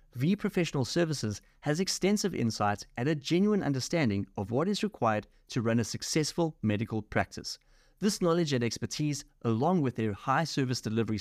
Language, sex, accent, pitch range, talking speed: English, male, German, 110-160 Hz, 155 wpm